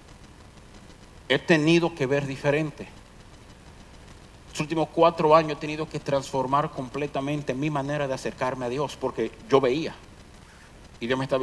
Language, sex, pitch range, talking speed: Hungarian, male, 125-180 Hz, 140 wpm